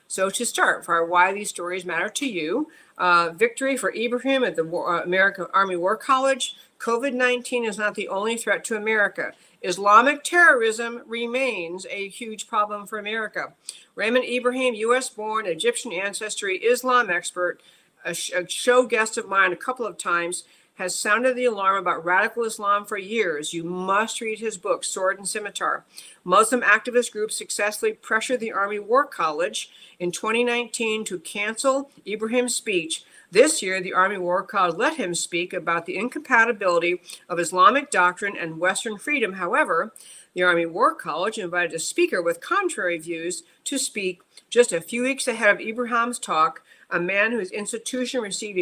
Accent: American